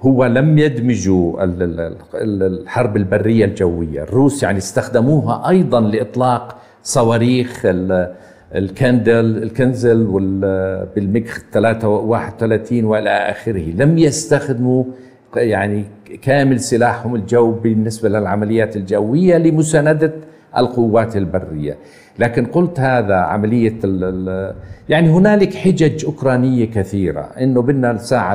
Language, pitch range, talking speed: Arabic, 105-150 Hz, 95 wpm